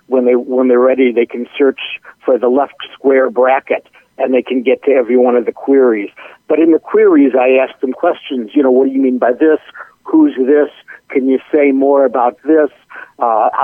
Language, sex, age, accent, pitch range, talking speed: English, male, 60-79, American, 125-150 Hz, 210 wpm